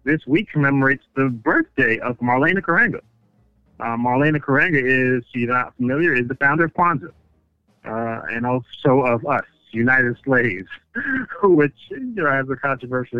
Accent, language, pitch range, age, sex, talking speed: American, English, 115-140 Hz, 40-59, male, 145 wpm